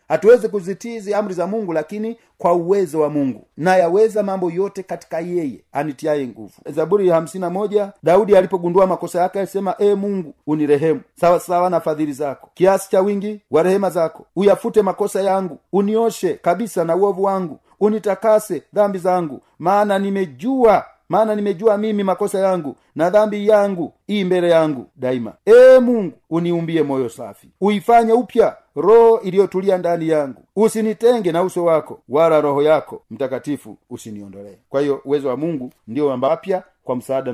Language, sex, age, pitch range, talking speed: Swahili, male, 40-59, 155-205 Hz, 150 wpm